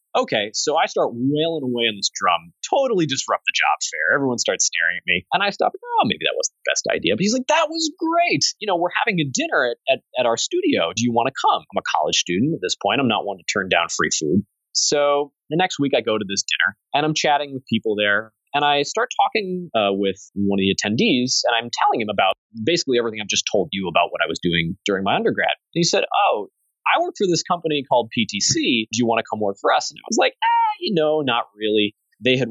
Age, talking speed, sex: 30-49, 260 wpm, male